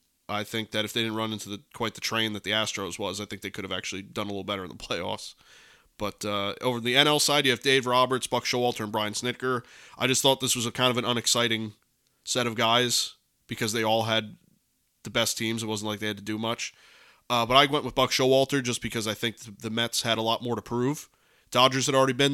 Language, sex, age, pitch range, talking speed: English, male, 20-39, 110-125 Hz, 260 wpm